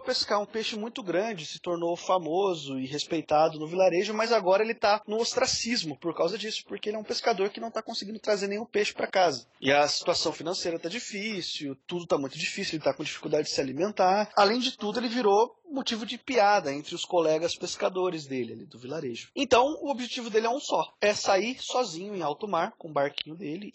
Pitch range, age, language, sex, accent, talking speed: 160-215 Hz, 20-39, Portuguese, male, Brazilian, 215 wpm